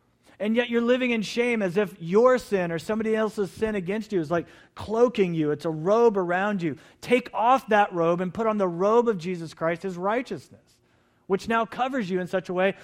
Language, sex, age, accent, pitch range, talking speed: English, male, 40-59, American, 130-190 Hz, 220 wpm